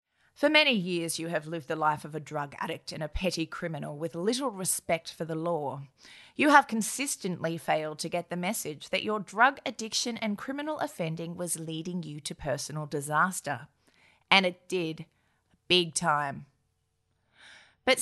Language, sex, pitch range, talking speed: English, female, 165-230 Hz, 165 wpm